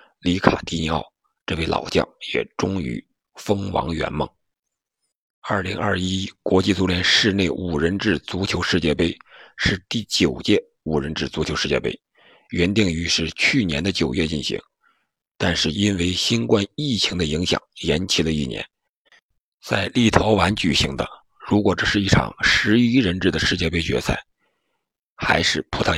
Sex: male